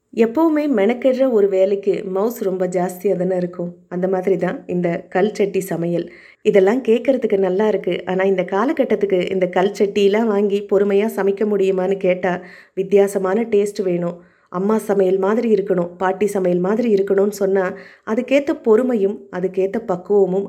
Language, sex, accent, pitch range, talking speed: Tamil, female, native, 185-210 Hz, 130 wpm